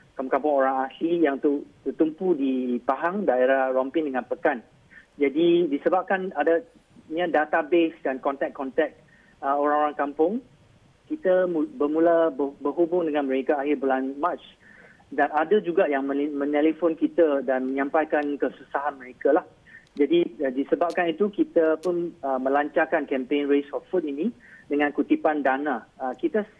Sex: male